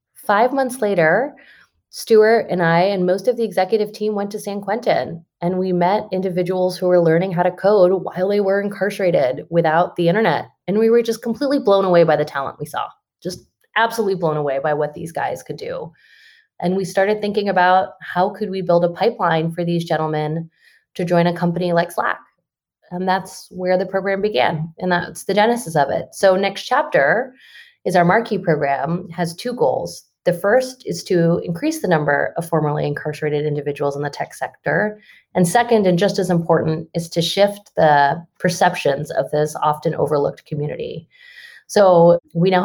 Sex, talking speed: female, 185 wpm